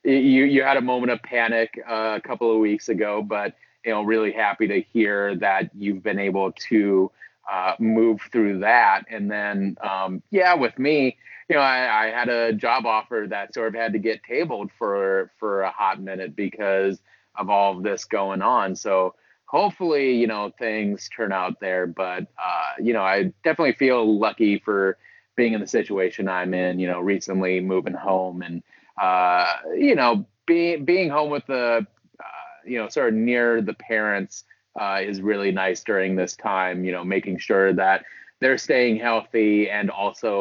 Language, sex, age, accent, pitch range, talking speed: English, male, 30-49, American, 95-120 Hz, 185 wpm